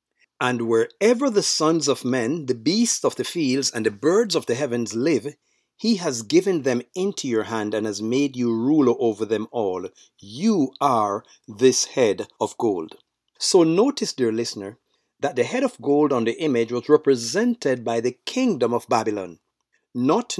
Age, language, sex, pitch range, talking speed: 50-69, English, male, 120-195 Hz, 175 wpm